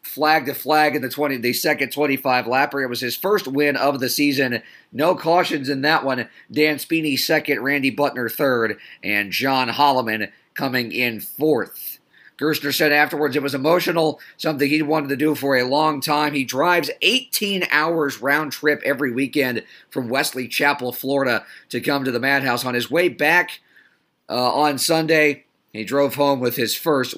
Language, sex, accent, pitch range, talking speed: English, male, American, 135-155 Hz, 175 wpm